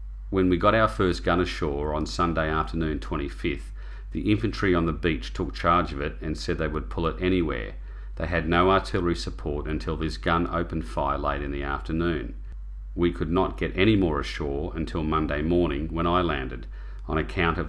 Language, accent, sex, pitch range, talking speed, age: English, Australian, male, 75-85 Hz, 195 wpm, 40-59